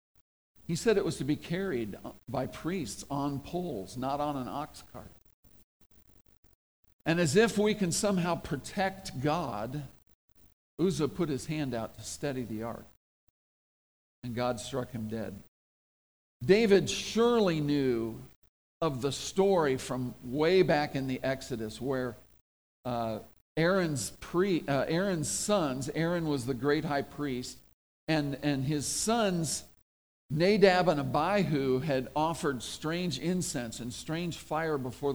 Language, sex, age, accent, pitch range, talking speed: English, male, 50-69, American, 130-190 Hz, 130 wpm